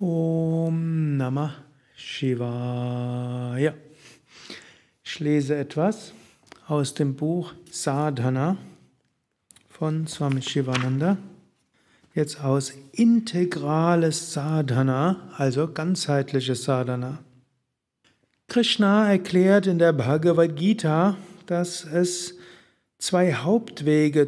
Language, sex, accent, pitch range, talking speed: German, male, German, 140-180 Hz, 75 wpm